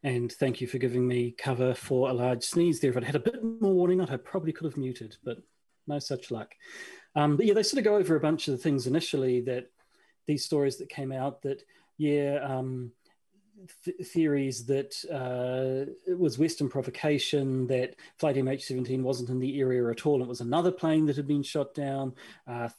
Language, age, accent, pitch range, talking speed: English, 30-49, Australian, 130-160 Hz, 205 wpm